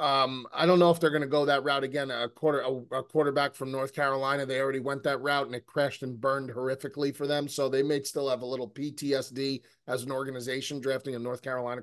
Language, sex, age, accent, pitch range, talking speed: English, male, 30-49, American, 140-185 Hz, 245 wpm